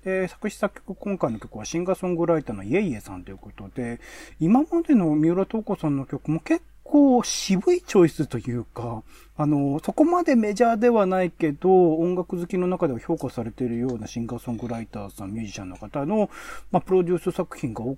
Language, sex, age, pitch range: Japanese, male, 40-59, 110-185 Hz